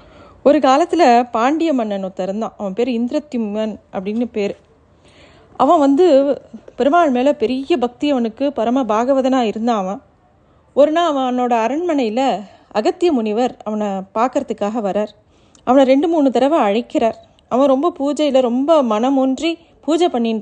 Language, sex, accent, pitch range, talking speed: Tamil, female, native, 215-275 Hz, 130 wpm